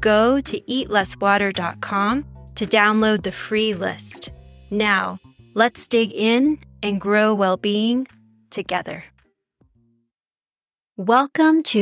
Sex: female